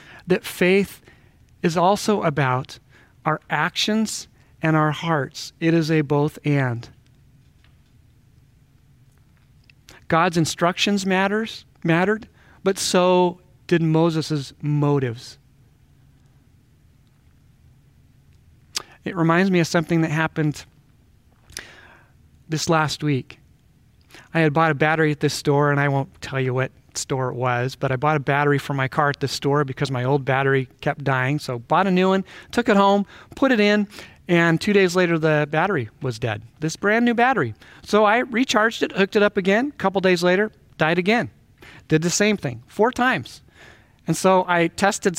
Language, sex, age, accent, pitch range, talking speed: English, male, 40-59, American, 140-185 Hz, 155 wpm